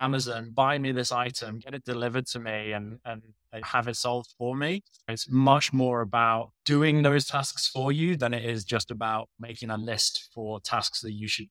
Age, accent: 20-39, British